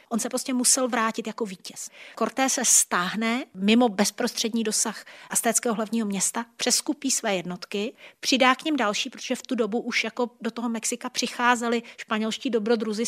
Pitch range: 205-235 Hz